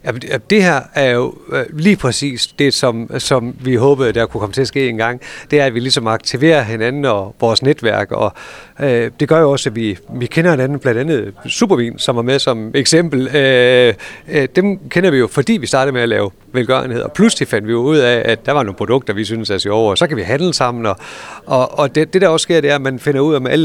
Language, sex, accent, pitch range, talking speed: Danish, male, native, 120-155 Hz, 255 wpm